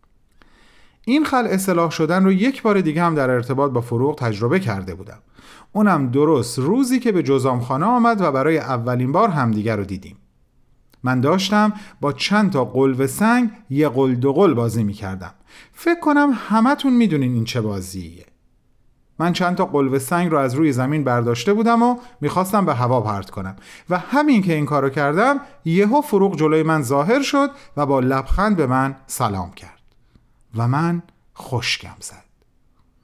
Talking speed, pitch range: 165 wpm, 120-195 Hz